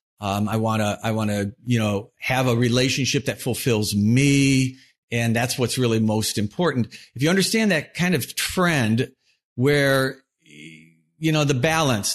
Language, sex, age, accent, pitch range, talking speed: English, male, 50-69, American, 110-140 Hz, 165 wpm